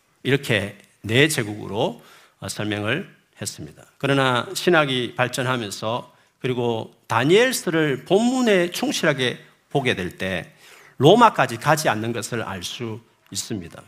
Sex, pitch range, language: male, 110-155 Hz, Korean